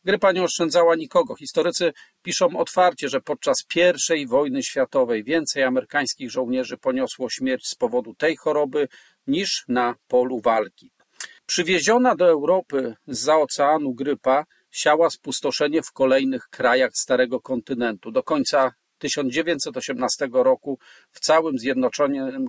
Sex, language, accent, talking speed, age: male, Polish, native, 120 wpm, 40-59